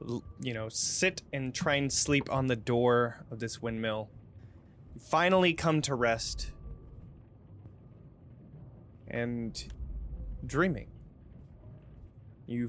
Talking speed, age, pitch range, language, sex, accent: 100 wpm, 20-39, 105-125 Hz, English, male, American